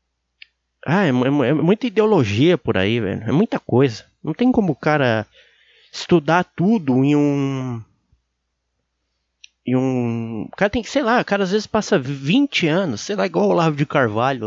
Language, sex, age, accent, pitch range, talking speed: English, male, 20-39, Brazilian, 105-155 Hz, 180 wpm